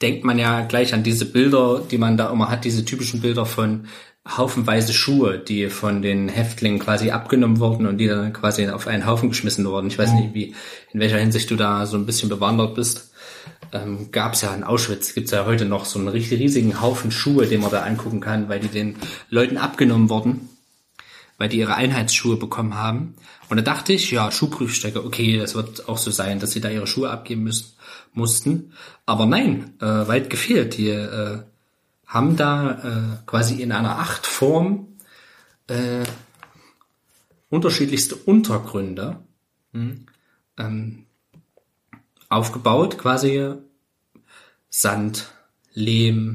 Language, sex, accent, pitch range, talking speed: German, male, German, 110-125 Hz, 160 wpm